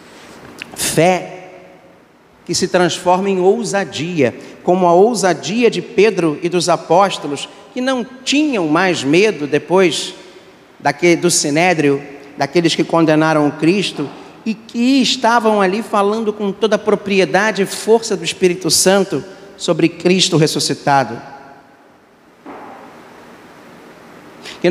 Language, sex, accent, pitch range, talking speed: Portuguese, male, Brazilian, 140-190 Hz, 110 wpm